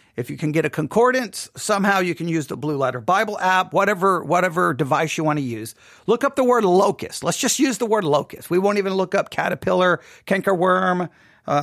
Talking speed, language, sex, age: 215 wpm, English, male, 50-69